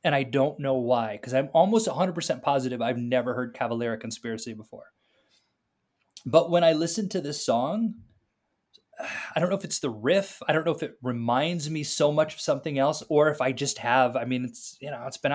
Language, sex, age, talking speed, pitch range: English, male, 20-39, 210 wpm, 120-155 Hz